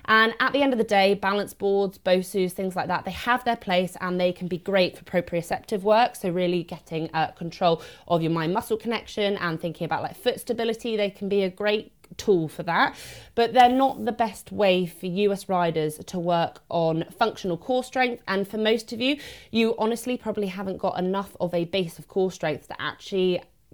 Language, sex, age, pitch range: English, female, 20-39, 175-215 Hz